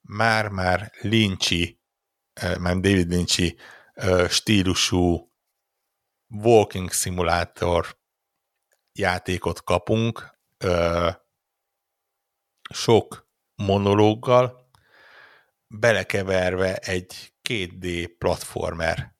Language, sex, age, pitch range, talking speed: Hungarian, male, 60-79, 90-110 Hz, 55 wpm